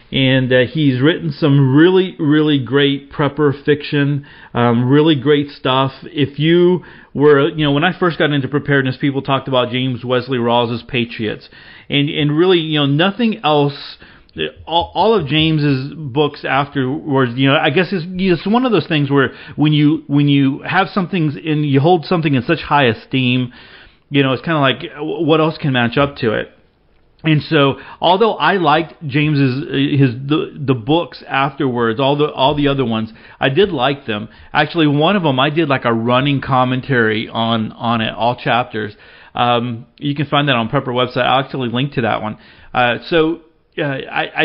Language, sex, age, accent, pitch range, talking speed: English, male, 40-59, American, 130-155 Hz, 185 wpm